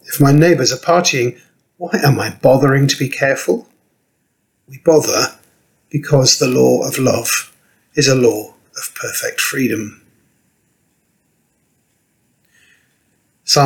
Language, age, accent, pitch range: English, 50-69, British, 120-170 Hz